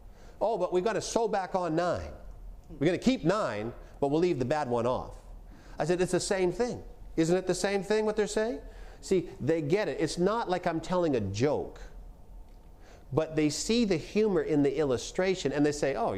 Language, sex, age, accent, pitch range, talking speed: English, male, 50-69, American, 100-170 Hz, 215 wpm